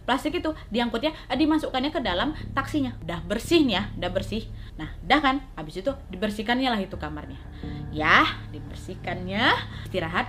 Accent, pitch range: native, 215-305 Hz